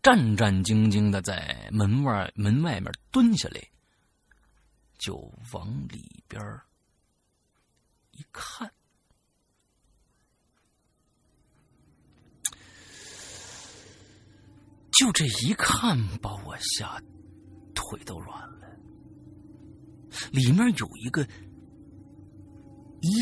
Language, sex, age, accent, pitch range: Chinese, male, 50-69, native, 95-140 Hz